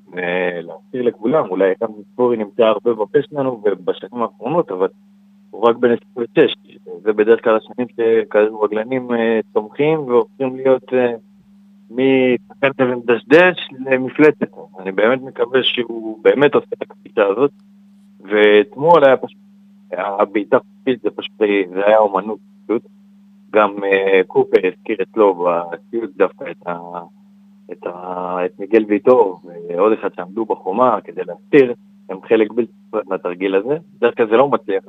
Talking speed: 140 wpm